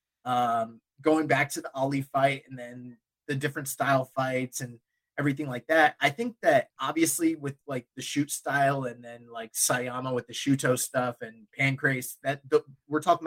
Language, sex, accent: English, male, American